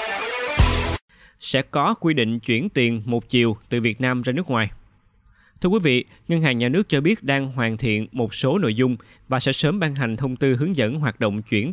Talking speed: 215 wpm